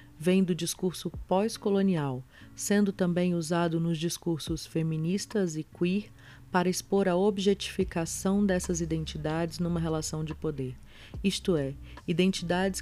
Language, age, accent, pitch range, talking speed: Portuguese, 40-59, Brazilian, 150-185 Hz, 115 wpm